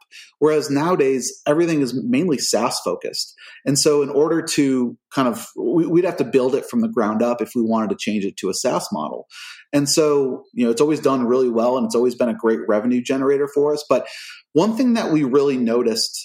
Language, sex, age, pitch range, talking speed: English, male, 30-49, 120-150 Hz, 220 wpm